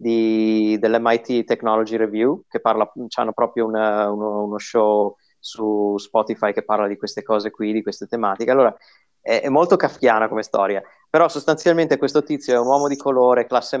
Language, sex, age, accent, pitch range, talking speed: Italian, male, 30-49, native, 110-125 Hz, 165 wpm